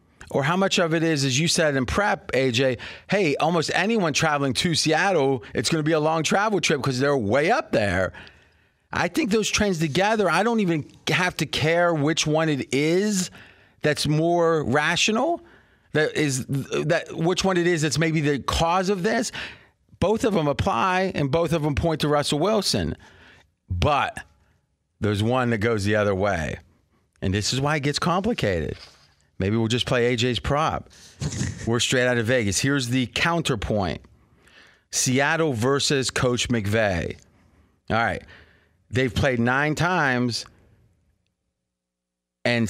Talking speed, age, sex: 160 wpm, 30-49, male